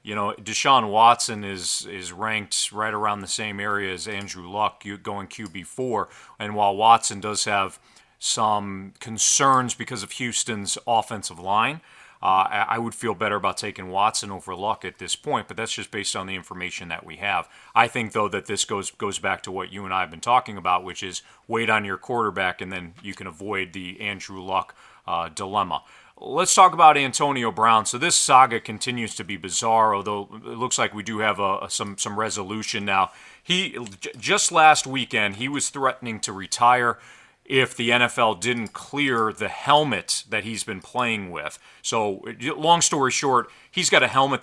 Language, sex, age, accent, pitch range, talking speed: English, male, 40-59, American, 100-125 Hz, 190 wpm